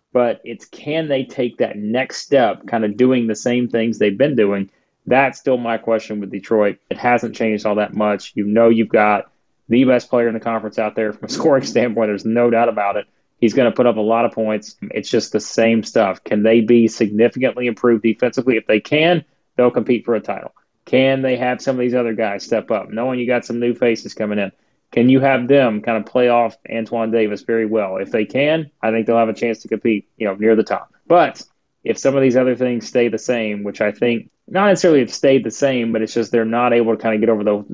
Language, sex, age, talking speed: English, male, 30-49, 245 wpm